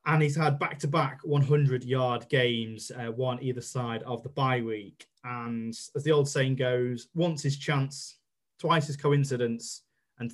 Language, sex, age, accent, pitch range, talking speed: English, male, 20-39, British, 120-140 Hz, 155 wpm